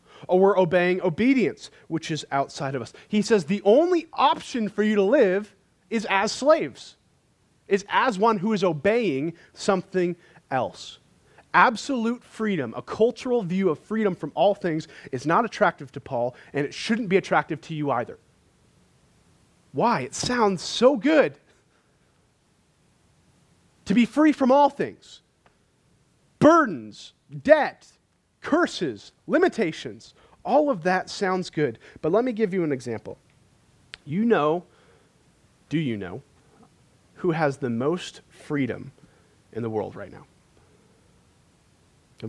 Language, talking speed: English, 135 wpm